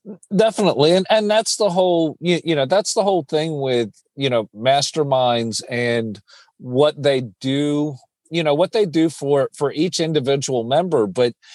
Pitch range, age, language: 125-160 Hz, 40-59, English